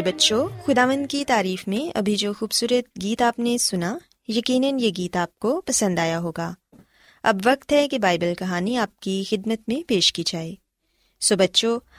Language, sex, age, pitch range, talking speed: Urdu, female, 20-39, 185-260 Hz, 180 wpm